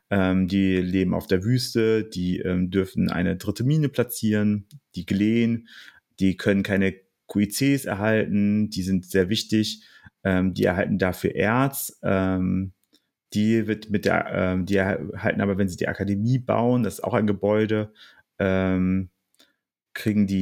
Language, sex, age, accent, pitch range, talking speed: German, male, 30-49, German, 95-110 Hz, 145 wpm